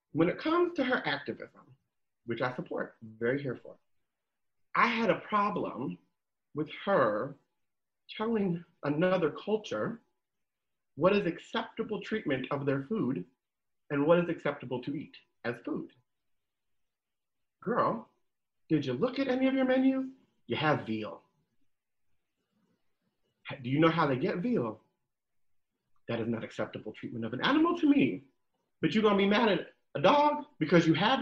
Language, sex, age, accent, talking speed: English, male, 40-59, American, 150 wpm